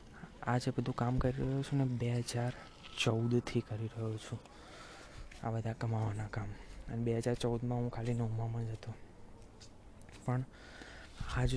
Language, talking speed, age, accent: Gujarati, 95 wpm, 20-39, native